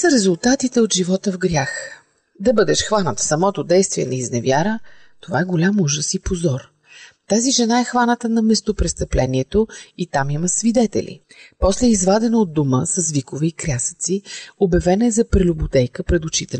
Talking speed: 165 wpm